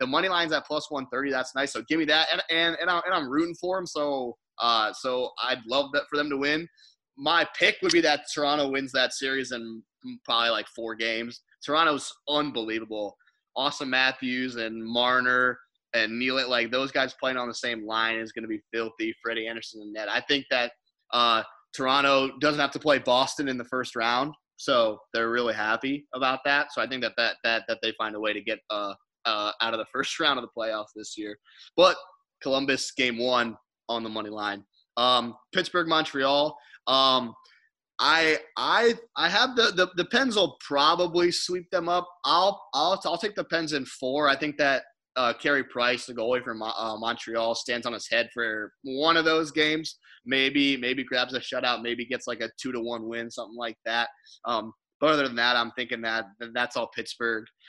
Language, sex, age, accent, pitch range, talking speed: English, male, 20-39, American, 115-150 Hz, 205 wpm